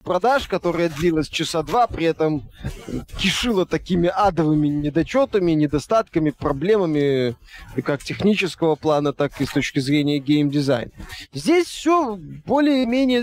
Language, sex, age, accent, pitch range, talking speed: Russian, male, 20-39, native, 160-240 Hz, 115 wpm